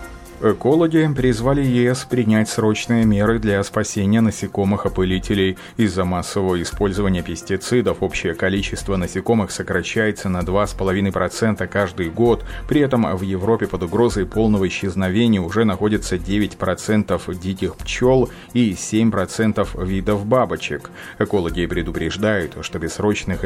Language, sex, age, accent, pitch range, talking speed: Russian, male, 30-49, native, 90-110 Hz, 110 wpm